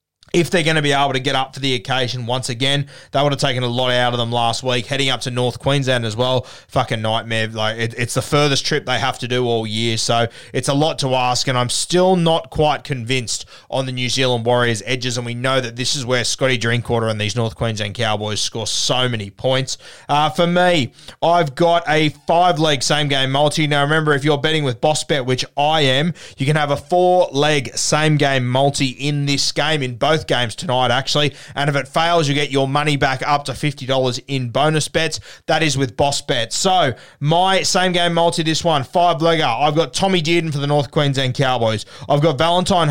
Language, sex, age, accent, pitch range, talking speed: English, male, 20-39, Australian, 130-155 Hz, 220 wpm